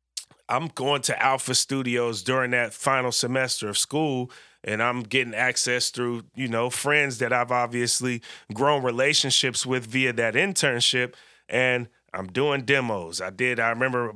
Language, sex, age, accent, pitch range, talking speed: English, male, 30-49, American, 125-150 Hz, 155 wpm